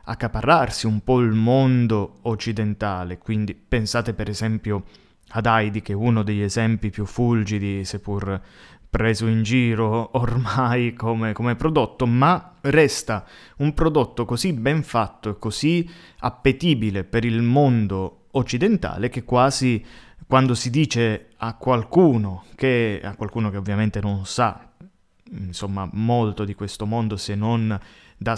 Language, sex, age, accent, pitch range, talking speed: Italian, male, 20-39, native, 105-125 Hz, 130 wpm